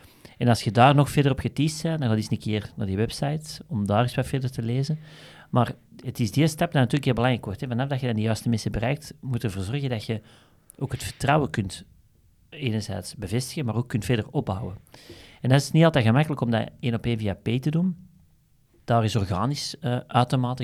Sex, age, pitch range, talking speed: male, 40-59, 110-130 Hz, 235 wpm